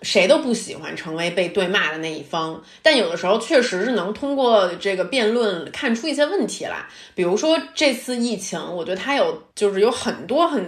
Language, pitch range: Chinese, 180-245 Hz